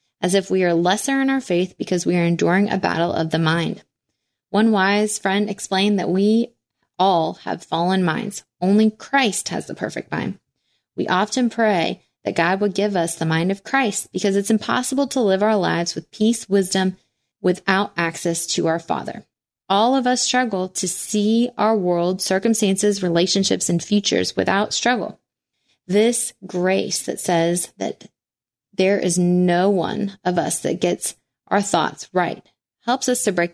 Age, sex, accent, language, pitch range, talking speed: 20-39, female, American, English, 175-210 Hz, 170 wpm